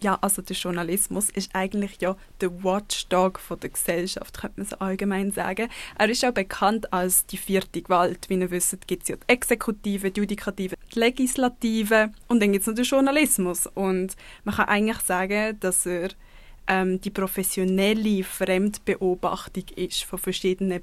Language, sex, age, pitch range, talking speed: German, female, 20-39, 185-215 Hz, 165 wpm